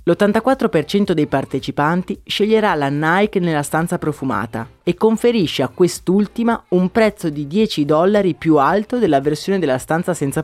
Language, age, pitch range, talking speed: Italian, 30-49, 145-210 Hz, 145 wpm